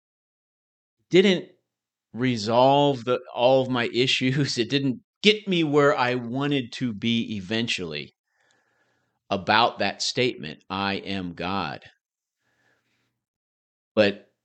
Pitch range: 95-125 Hz